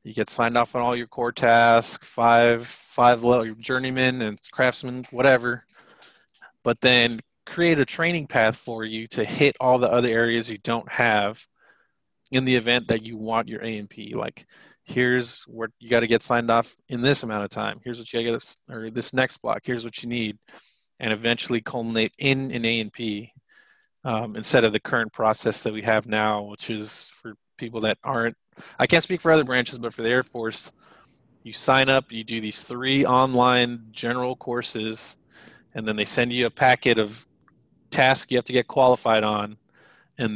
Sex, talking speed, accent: male, 185 wpm, American